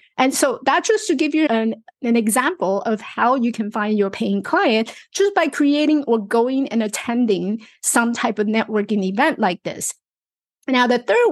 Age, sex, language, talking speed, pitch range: 30-49, female, English, 185 wpm, 215-285 Hz